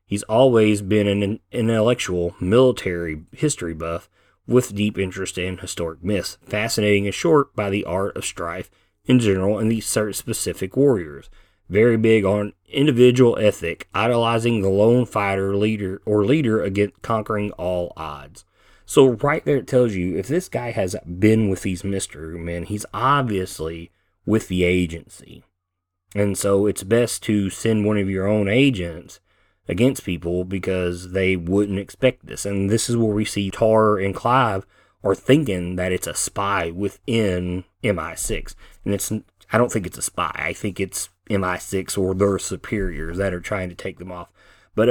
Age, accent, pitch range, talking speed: 30-49, American, 90-110 Hz, 165 wpm